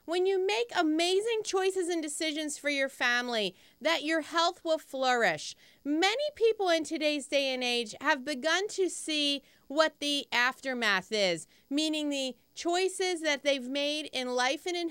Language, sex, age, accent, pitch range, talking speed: English, female, 40-59, American, 260-335 Hz, 160 wpm